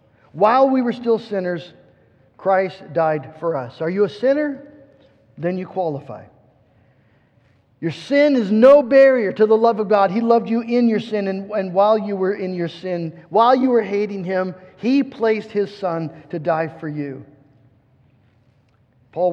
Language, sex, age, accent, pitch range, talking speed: English, male, 50-69, American, 150-205 Hz, 170 wpm